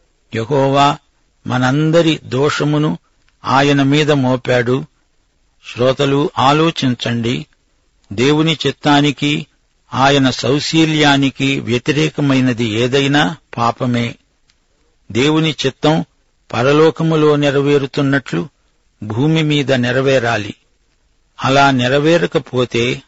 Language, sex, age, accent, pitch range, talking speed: Telugu, male, 50-69, native, 125-150 Hz, 60 wpm